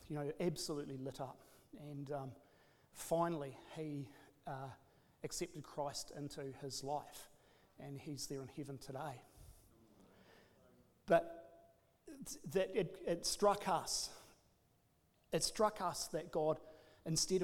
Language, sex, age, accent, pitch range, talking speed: English, male, 40-59, Australian, 140-170 Hz, 115 wpm